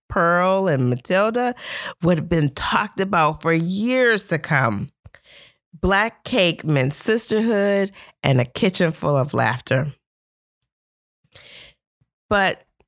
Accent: American